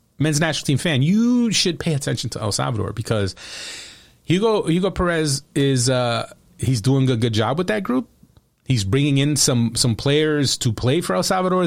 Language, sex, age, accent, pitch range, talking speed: English, male, 30-49, American, 120-160 Hz, 185 wpm